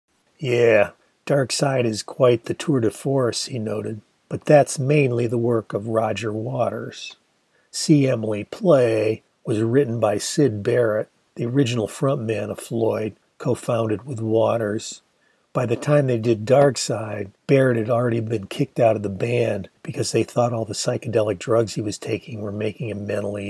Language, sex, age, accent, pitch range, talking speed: English, male, 50-69, American, 110-130 Hz, 165 wpm